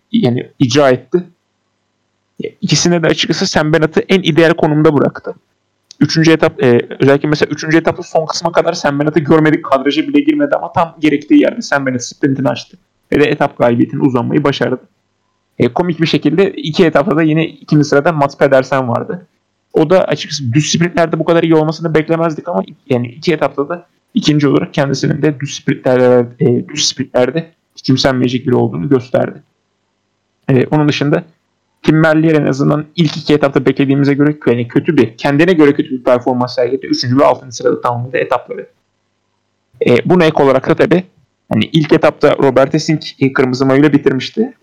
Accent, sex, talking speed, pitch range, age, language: native, male, 160 wpm, 130-165 Hz, 30-49, Turkish